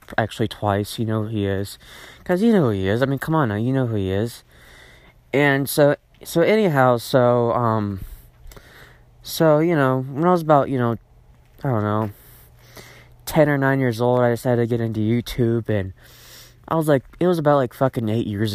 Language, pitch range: English, 105-135 Hz